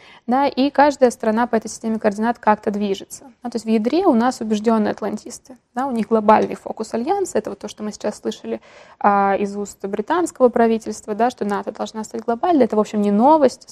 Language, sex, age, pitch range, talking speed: Russian, female, 20-39, 210-245 Hz, 210 wpm